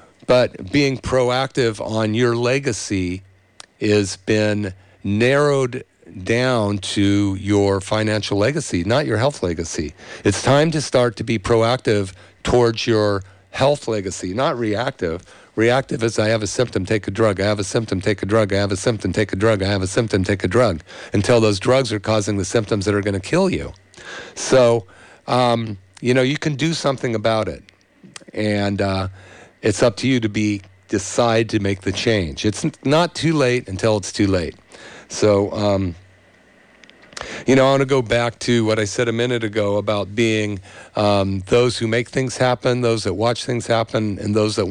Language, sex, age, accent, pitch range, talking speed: English, male, 50-69, American, 100-120 Hz, 185 wpm